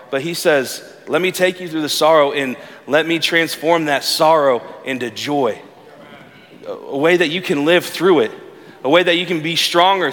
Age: 30-49